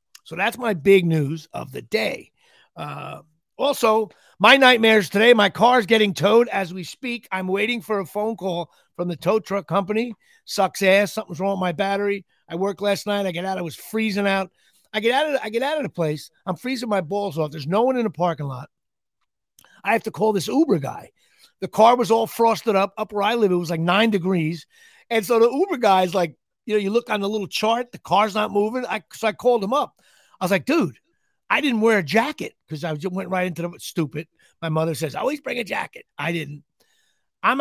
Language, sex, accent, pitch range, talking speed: English, male, American, 175-230 Hz, 235 wpm